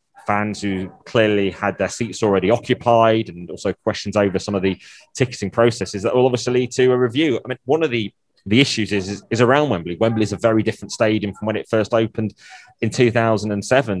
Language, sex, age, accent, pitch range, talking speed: English, male, 20-39, British, 100-125 Hz, 210 wpm